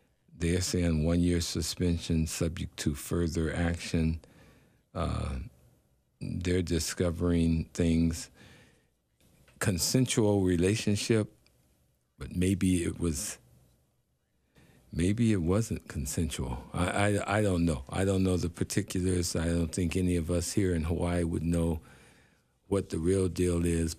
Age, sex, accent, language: 50-69, male, American, English